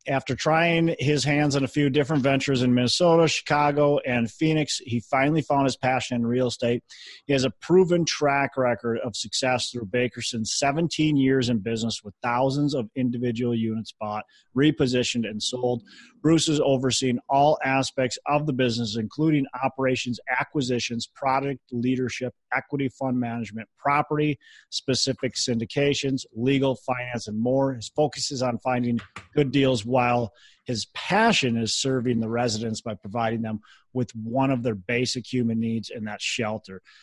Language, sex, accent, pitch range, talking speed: English, male, American, 115-140 Hz, 155 wpm